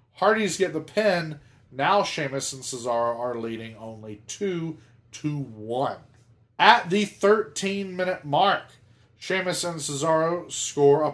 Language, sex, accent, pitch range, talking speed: English, male, American, 115-155 Hz, 115 wpm